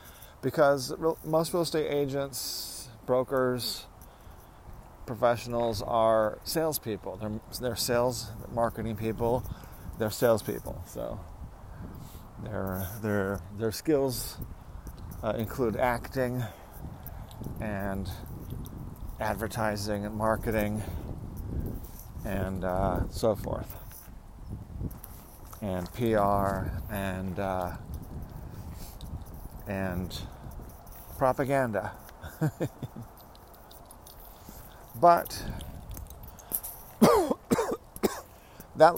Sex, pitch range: male, 95-120 Hz